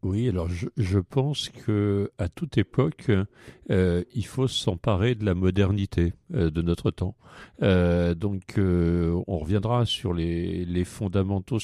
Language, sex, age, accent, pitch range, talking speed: French, male, 50-69, French, 90-110 Hz, 150 wpm